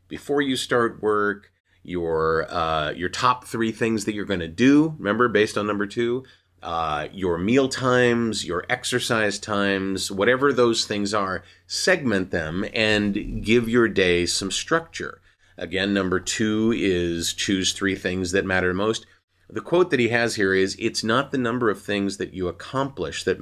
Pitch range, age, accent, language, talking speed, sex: 90-115 Hz, 30-49, American, English, 170 wpm, male